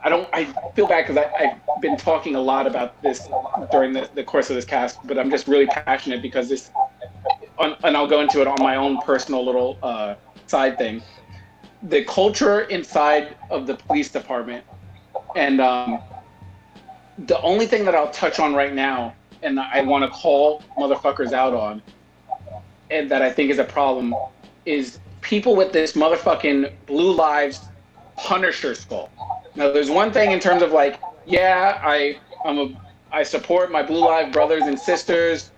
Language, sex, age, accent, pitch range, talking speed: English, male, 30-49, American, 130-155 Hz, 170 wpm